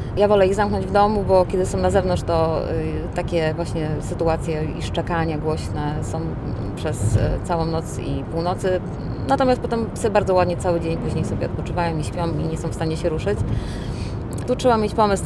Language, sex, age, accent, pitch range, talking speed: Polish, female, 20-39, native, 160-190 Hz, 185 wpm